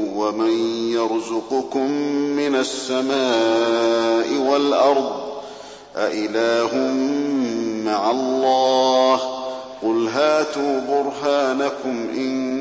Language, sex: Arabic, male